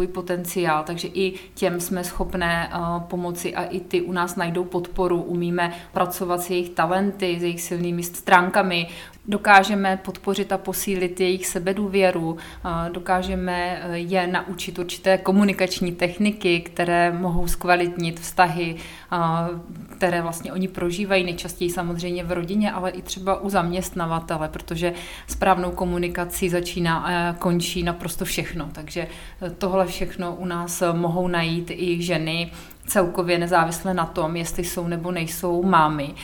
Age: 30-49